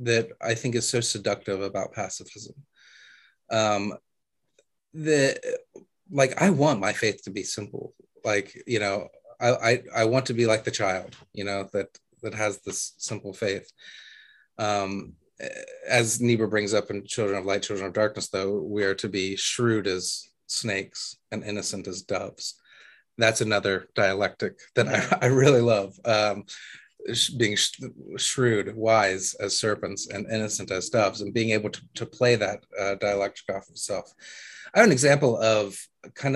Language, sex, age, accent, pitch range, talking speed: English, male, 30-49, American, 100-125 Hz, 160 wpm